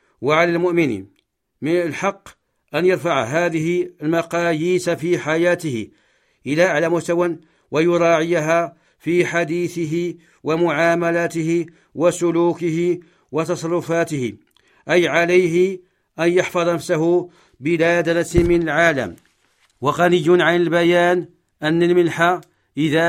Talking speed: 85 wpm